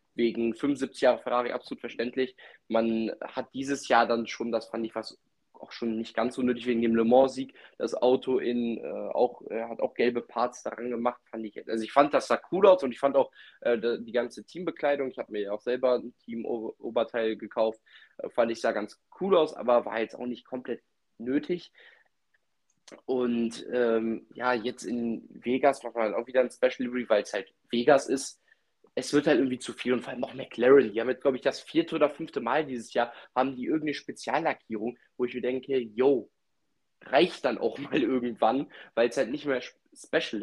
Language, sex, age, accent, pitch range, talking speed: German, male, 10-29, German, 115-135 Hz, 210 wpm